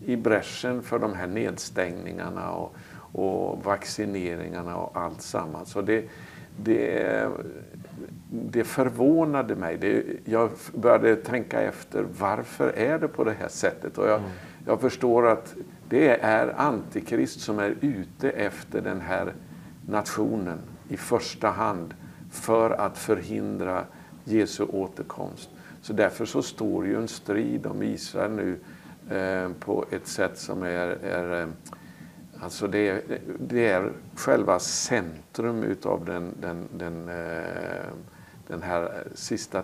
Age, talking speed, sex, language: 50-69, 115 wpm, male, English